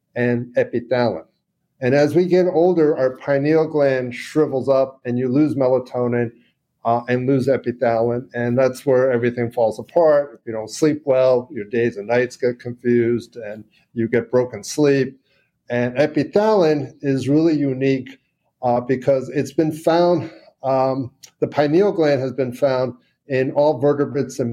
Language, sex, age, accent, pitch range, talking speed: English, male, 50-69, American, 125-150 Hz, 155 wpm